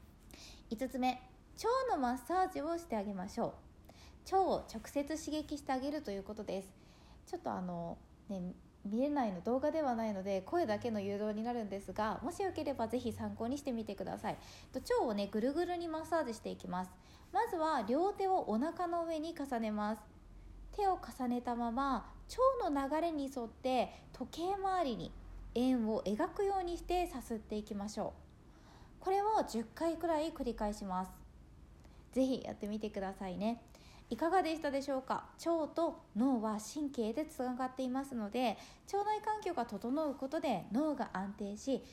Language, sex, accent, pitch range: Japanese, female, native, 215-325 Hz